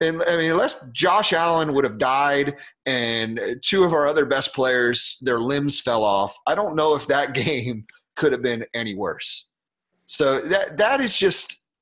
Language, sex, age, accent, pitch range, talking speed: English, male, 30-49, American, 125-165 Hz, 185 wpm